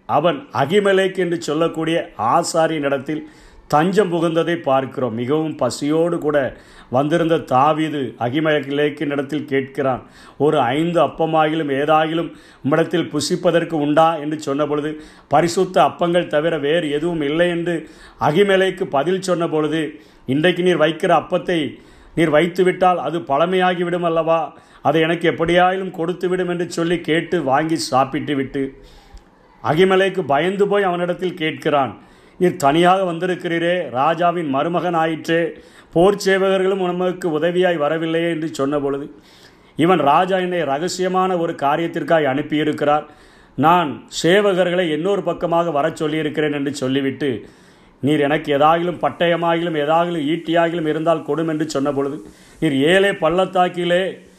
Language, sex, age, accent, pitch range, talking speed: Tamil, male, 50-69, native, 150-180 Hz, 115 wpm